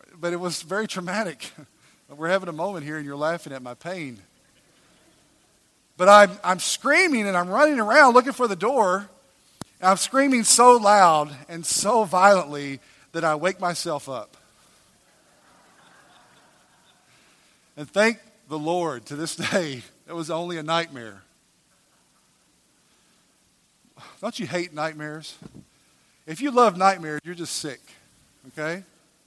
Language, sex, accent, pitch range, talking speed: English, male, American, 150-195 Hz, 135 wpm